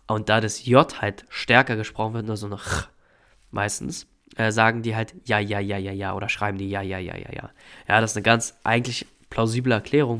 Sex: male